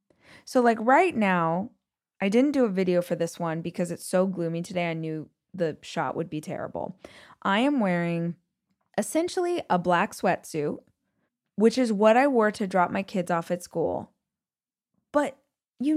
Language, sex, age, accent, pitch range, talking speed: English, female, 20-39, American, 175-235 Hz, 170 wpm